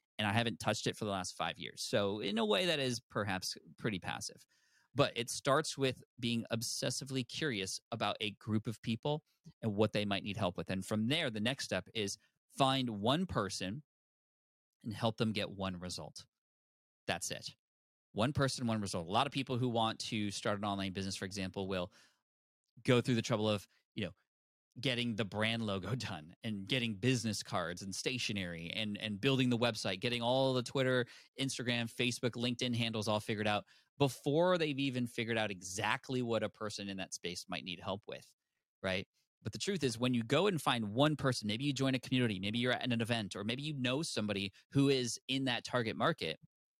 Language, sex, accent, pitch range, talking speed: English, male, American, 105-130 Hz, 200 wpm